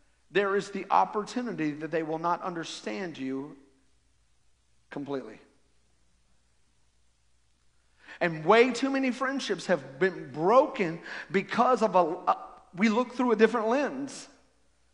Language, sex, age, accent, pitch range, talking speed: English, male, 40-59, American, 205-280 Hz, 115 wpm